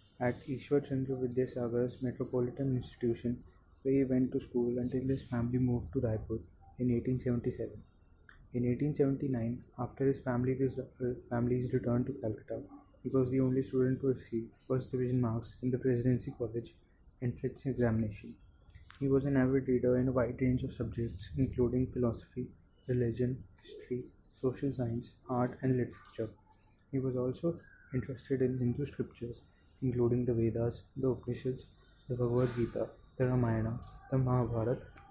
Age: 20-39